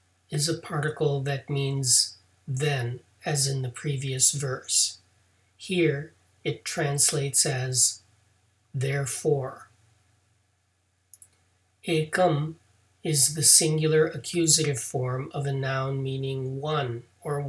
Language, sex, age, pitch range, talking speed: English, male, 40-59, 95-150 Hz, 95 wpm